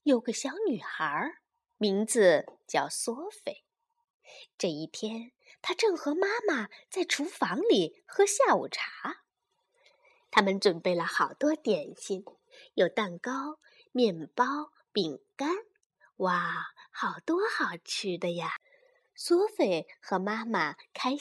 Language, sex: Chinese, female